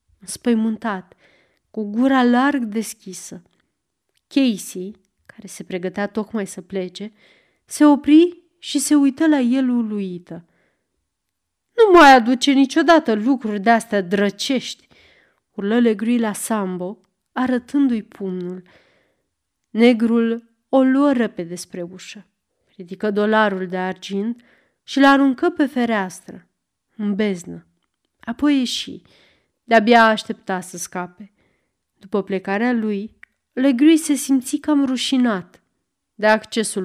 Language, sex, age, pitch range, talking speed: Romanian, female, 30-49, 190-265 Hz, 105 wpm